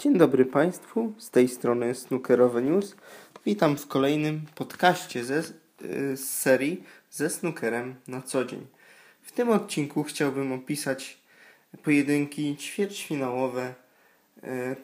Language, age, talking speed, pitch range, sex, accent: Polish, 20-39, 115 wpm, 130-150 Hz, male, native